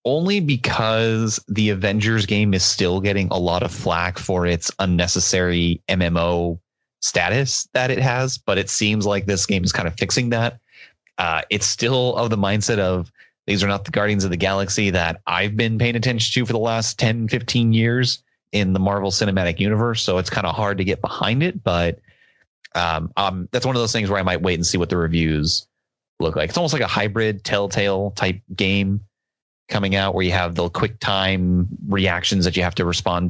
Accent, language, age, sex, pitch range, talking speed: American, English, 30-49, male, 90-110 Hz, 205 wpm